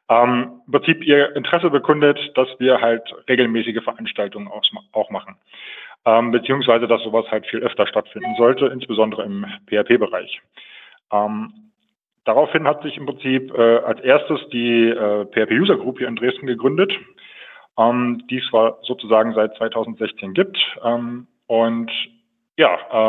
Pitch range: 110-135 Hz